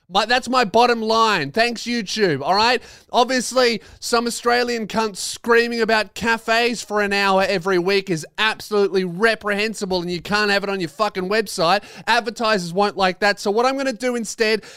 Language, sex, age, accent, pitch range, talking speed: English, male, 20-39, Australian, 200-240 Hz, 170 wpm